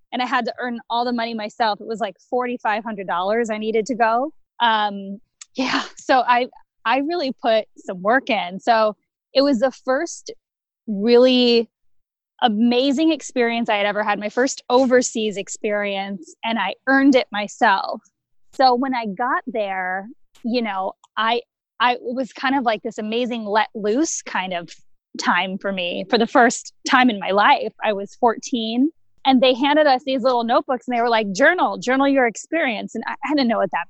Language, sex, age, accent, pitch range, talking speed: English, female, 10-29, American, 215-260 Hz, 180 wpm